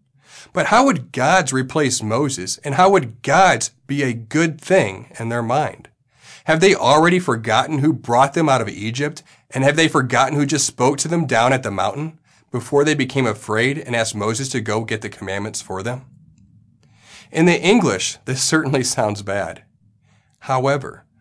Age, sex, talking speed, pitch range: 40-59, male, 175 wpm, 110-150 Hz